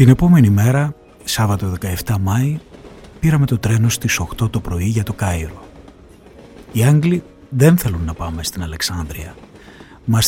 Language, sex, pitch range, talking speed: Greek, male, 95-130 Hz, 145 wpm